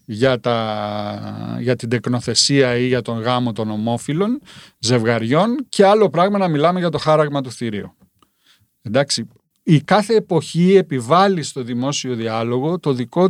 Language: Greek